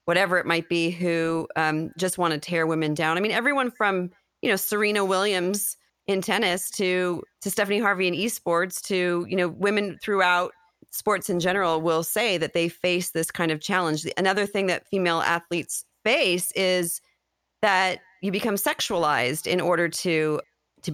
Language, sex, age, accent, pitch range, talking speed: English, female, 30-49, American, 155-185 Hz, 170 wpm